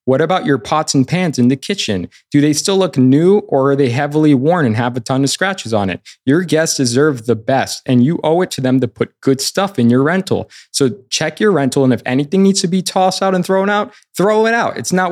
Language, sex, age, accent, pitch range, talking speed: English, male, 20-39, American, 120-160 Hz, 260 wpm